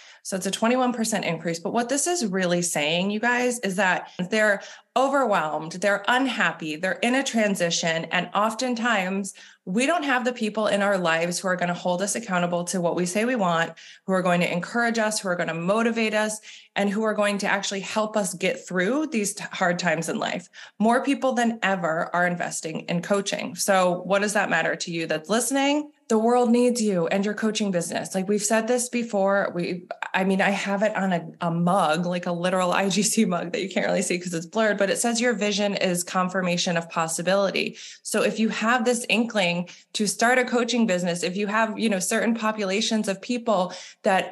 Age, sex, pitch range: 20-39, female, 180-230 Hz